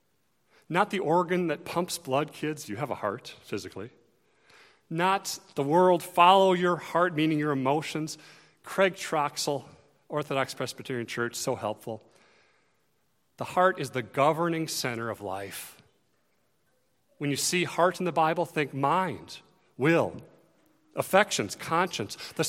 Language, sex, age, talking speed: English, male, 40-59, 130 wpm